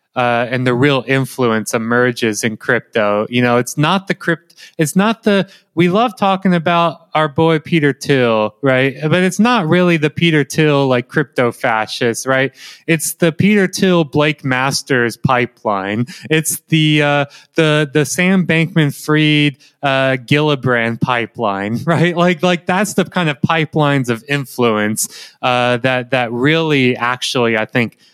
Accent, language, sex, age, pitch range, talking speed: American, English, male, 20-39, 125-155 Hz, 155 wpm